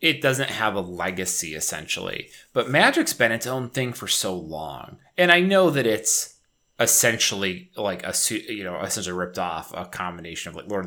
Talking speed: 190 wpm